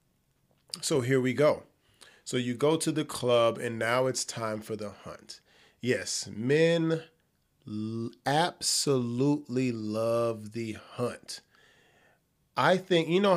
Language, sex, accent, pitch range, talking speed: English, male, American, 125-165 Hz, 120 wpm